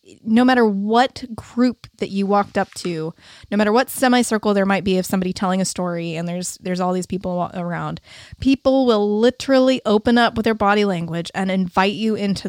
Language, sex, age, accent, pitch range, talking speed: English, female, 20-39, American, 195-255 Hz, 195 wpm